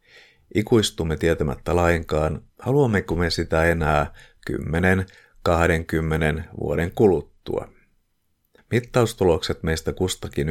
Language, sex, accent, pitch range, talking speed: Finnish, male, native, 80-100 Hz, 75 wpm